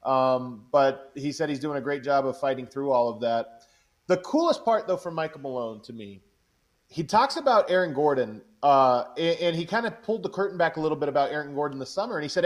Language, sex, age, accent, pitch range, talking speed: English, male, 30-49, American, 155-195 Hz, 240 wpm